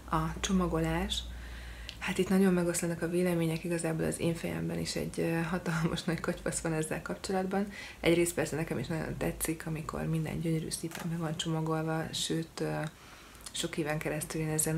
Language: Hungarian